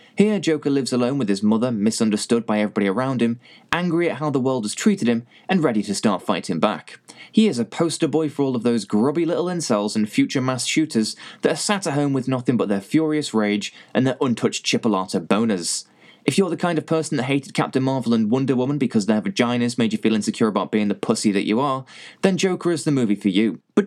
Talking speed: 235 wpm